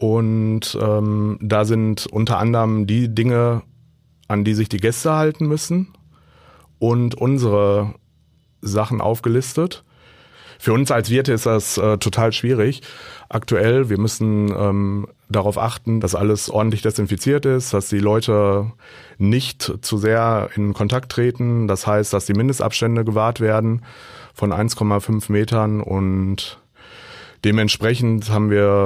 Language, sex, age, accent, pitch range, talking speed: German, male, 30-49, German, 100-120 Hz, 130 wpm